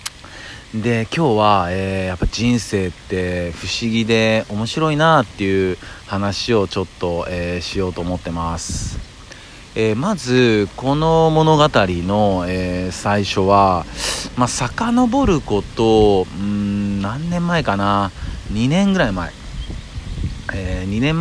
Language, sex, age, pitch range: Japanese, male, 40-59, 90-125 Hz